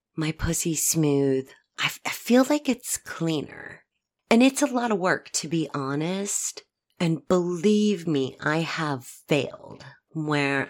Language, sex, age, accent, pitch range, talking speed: English, female, 30-49, American, 145-190 Hz, 140 wpm